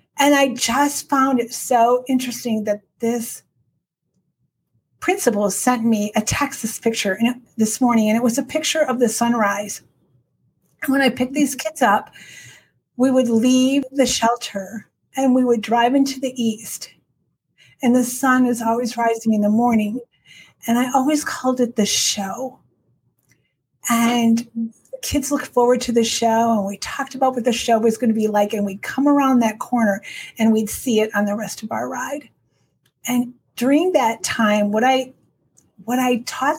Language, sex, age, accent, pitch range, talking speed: English, female, 40-59, American, 215-260 Hz, 170 wpm